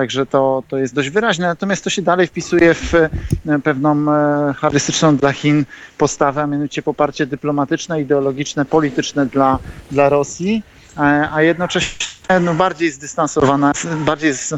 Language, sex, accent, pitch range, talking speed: Polish, male, native, 140-165 Hz, 125 wpm